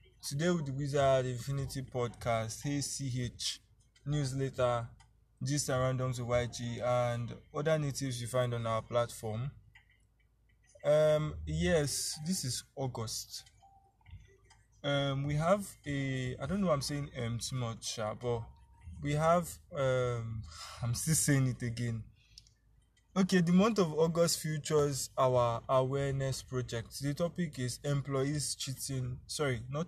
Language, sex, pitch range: English, male, 115-145 Hz